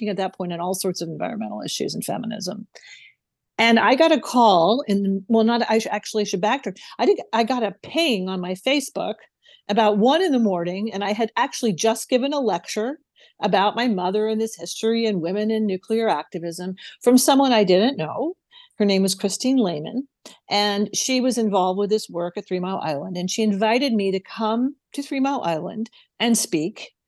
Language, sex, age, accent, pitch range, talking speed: English, female, 50-69, American, 195-255 Hz, 195 wpm